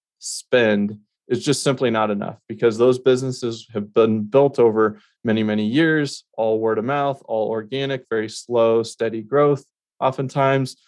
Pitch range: 110-130 Hz